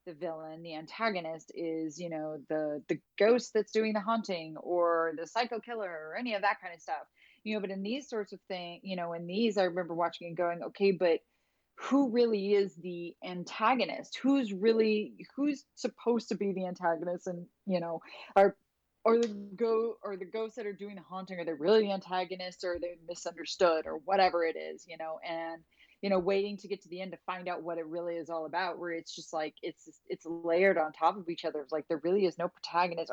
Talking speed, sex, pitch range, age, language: 225 wpm, female, 170-215 Hz, 30-49, English